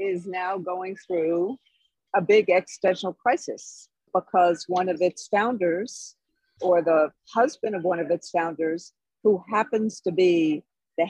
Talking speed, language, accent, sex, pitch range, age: 140 wpm, English, American, female, 170-205 Hz, 50-69